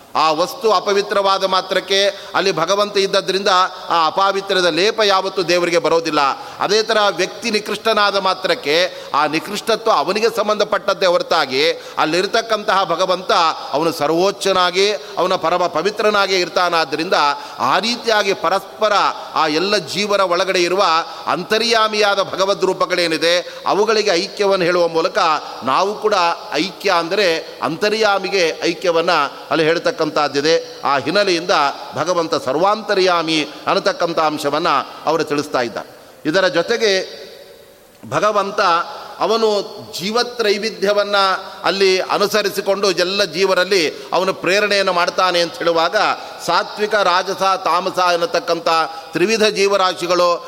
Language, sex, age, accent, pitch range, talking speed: Kannada, male, 30-49, native, 175-210 Hz, 100 wpm